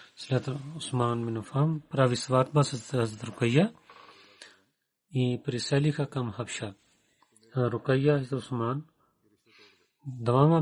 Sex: male